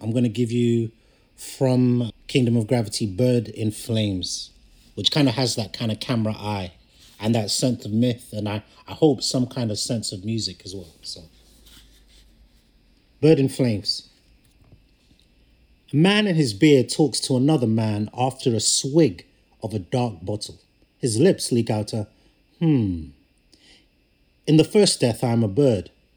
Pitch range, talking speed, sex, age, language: 100-135 Hz, 165 wpm, male, 30-49, English